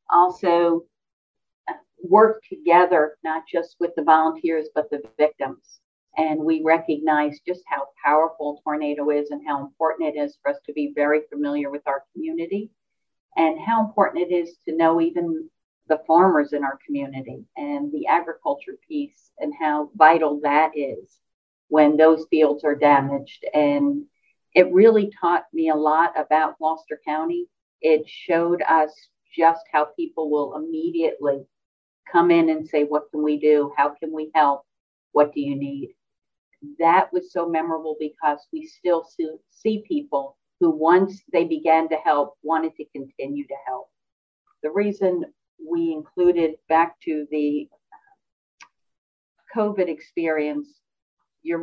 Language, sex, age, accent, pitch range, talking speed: English, female, 50-69, American, 150-180 Hz, 145 wpm